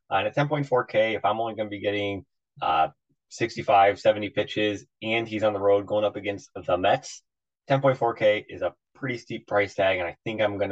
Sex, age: male, 20-39